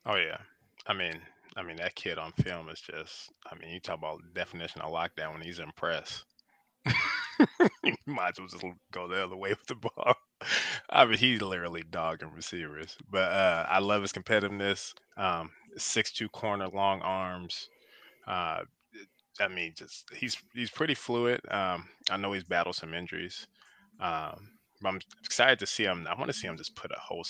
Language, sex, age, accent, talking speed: English, male, 20-39, American, 185 wpm